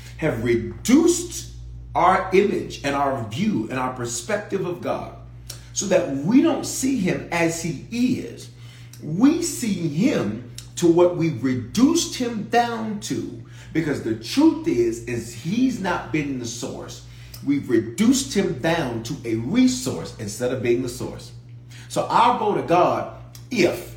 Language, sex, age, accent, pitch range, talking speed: English, male, 40-59, American, 120-190 Hz, 150 wpm